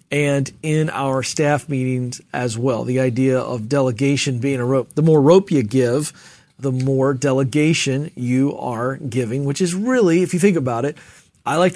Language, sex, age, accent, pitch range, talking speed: English, male, 40-59, American, 140-180 Hz, 180 wpm